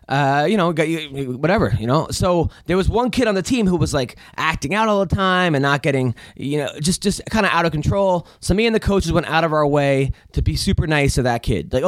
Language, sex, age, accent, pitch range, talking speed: English, male, 20-39, American, 145-195 Hz, 265 wpm